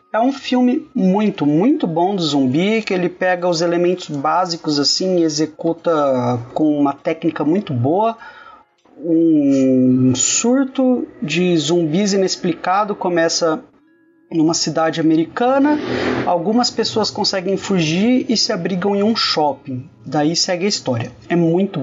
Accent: Brazilian